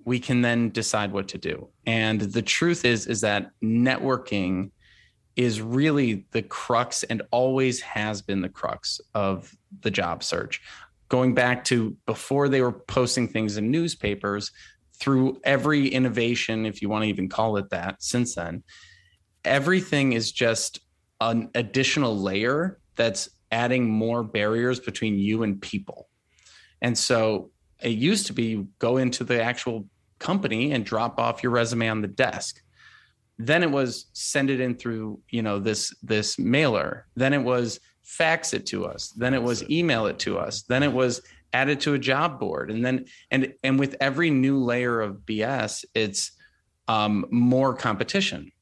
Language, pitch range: English, 105-130 Hz